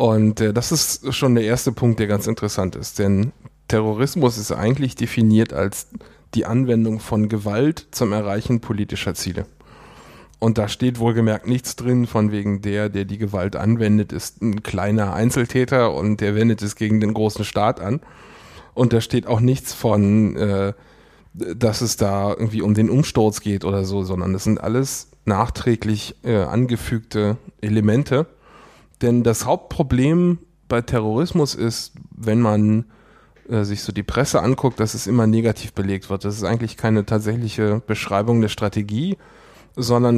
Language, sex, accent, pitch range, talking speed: German, male, German, 105-125 Hz, 160 wpm